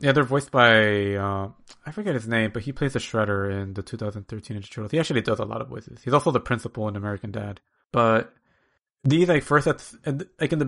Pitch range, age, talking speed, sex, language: 105-130 Hz, 30-49, 240 wpm, male, English